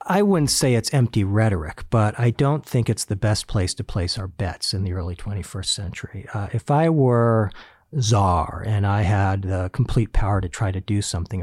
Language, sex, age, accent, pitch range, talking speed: English, male, 40-59, American, 95-135 Hz, 205 wpm